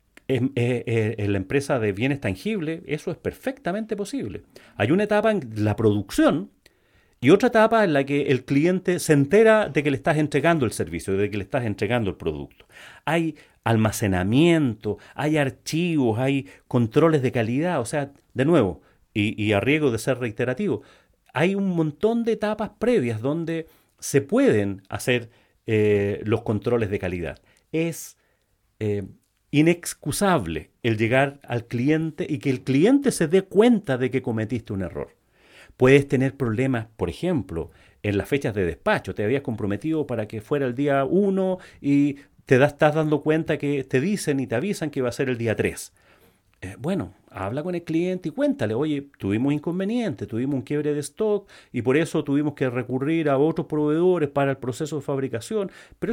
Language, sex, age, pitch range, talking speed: Spanish, male, 40-59, 115-165 Hz, 175 wpm